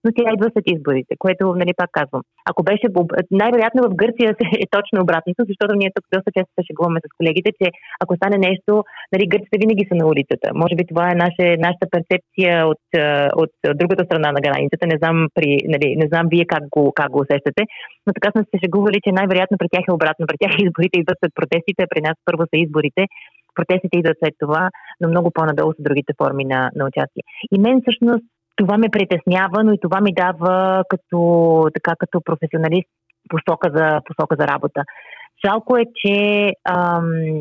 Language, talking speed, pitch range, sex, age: Bulgarian, 190 wpm, 160-190 Hz, female, 30-49